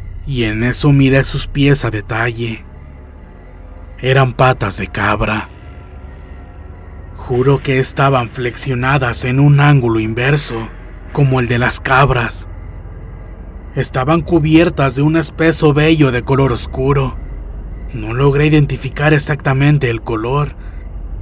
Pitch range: 90-135 Hz